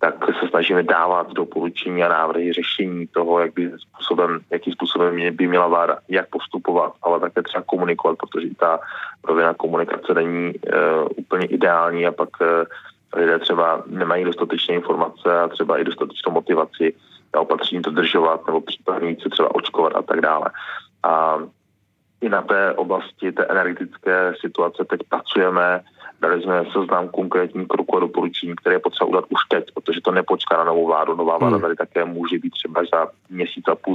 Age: 20-39